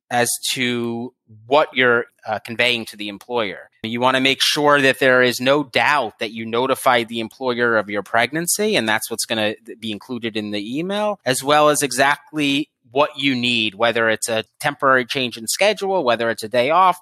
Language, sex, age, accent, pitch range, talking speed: English, male, 30-49, American, 115-155 Hz, 190 wpm